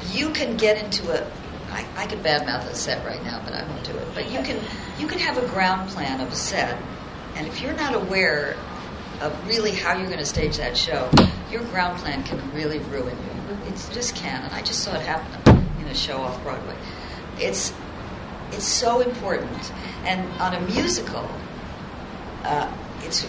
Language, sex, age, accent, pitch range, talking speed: English, female, 50-69, American, 165-225 Hz, 190 wpm